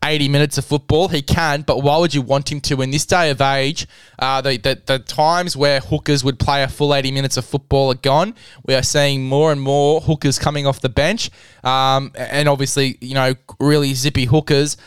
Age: 10-29